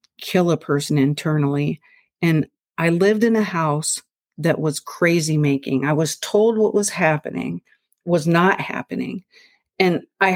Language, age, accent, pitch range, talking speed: English, 50-69, American, 155-195 Hz, 145 wpm